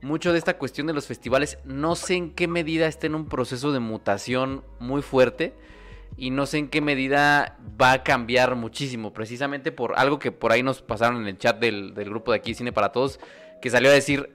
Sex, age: male, 20-39